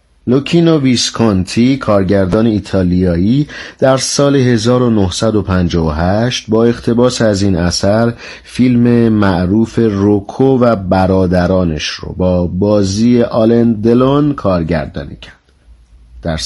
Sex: male